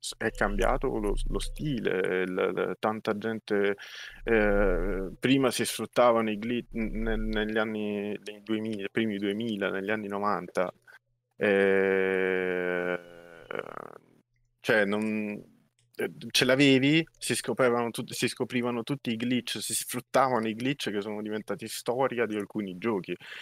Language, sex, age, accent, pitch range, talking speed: Italian, male, 20-39, native, 100-120 Hz, 120 wpm